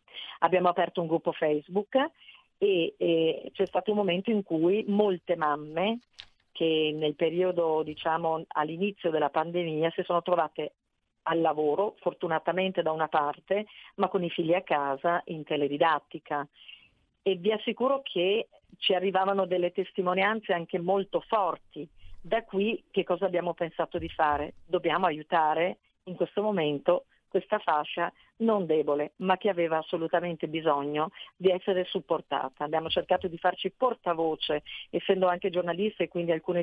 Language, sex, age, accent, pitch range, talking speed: Italian, female, 40-59, native, 160-190 Hz, 140 wpm